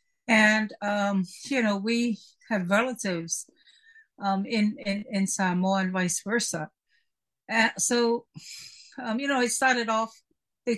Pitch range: 185-235 Hz